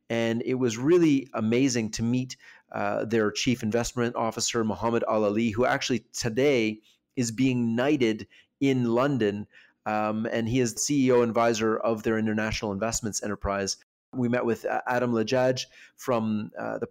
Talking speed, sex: 155 wpm, male